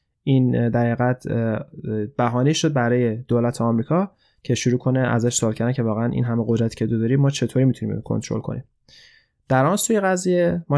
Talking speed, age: 180 wpm, 20-39